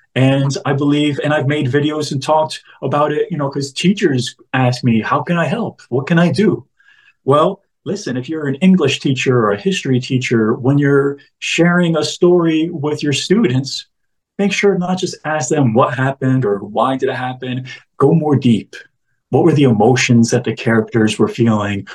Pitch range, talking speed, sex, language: 120-155 Hz, 190 wpm, male, English